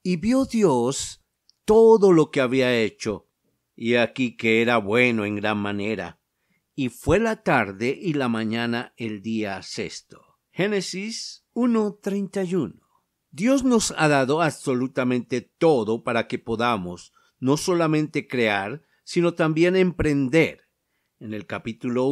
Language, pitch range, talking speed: Spanish, 120-165 Hz, 125 wpm